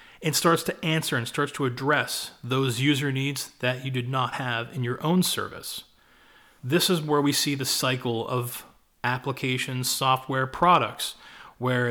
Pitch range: 125-155 Hz